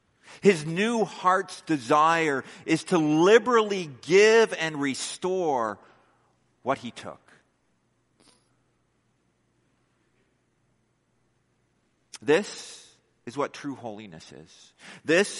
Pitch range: 115-175 Hz